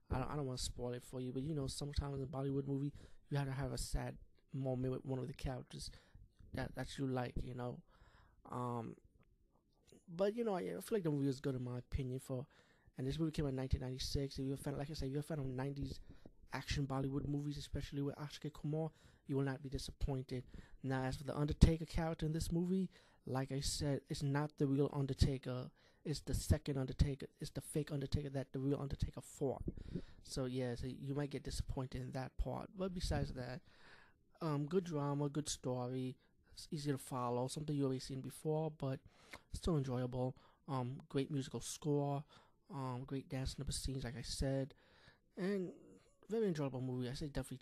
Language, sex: English, male